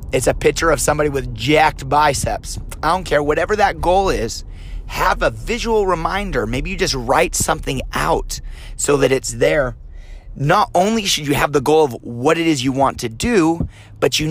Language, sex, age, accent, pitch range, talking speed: English, male, 30-49, American, 125-170 Hz, 195 wpm